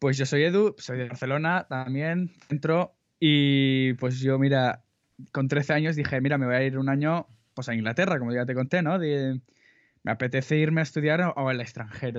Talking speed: 205 wpm